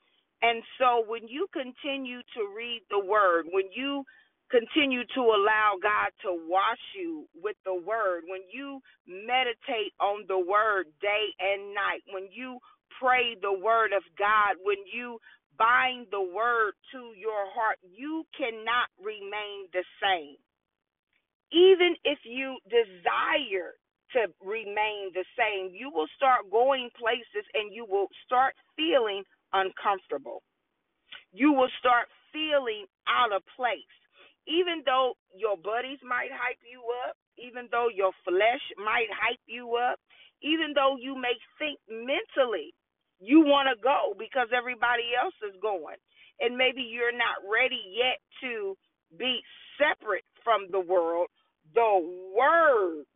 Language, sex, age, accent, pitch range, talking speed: English, female, 40-59, American, 210-280 Hz, 135 wpm